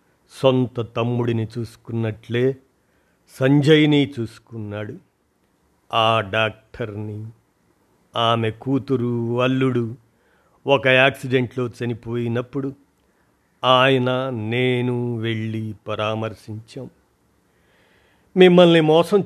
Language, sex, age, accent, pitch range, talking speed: Telugu, male, 50-69, native, 115-140 Hz, 60 wpm